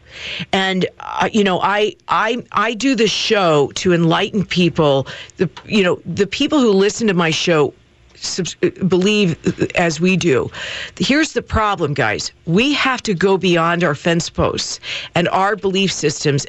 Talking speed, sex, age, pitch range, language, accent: 155 wpm, female, 50-69, 170-210 Hz, English, American